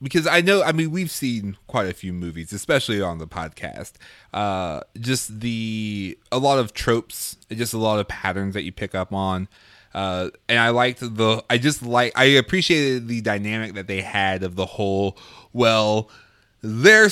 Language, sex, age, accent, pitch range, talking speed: English, male, 20-39, American, 110-160 Hz, 180 wpm